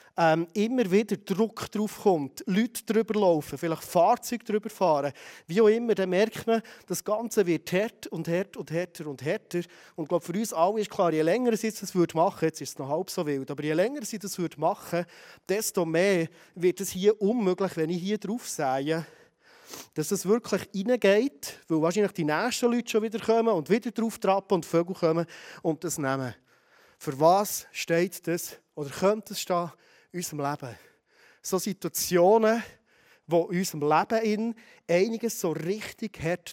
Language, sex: German, male